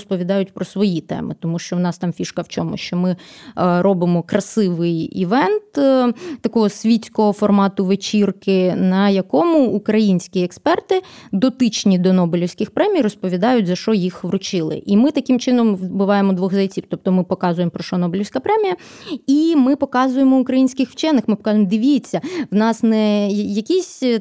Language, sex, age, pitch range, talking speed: Ukrainian, female, 20-39, 195-245 Hz, 150 wpm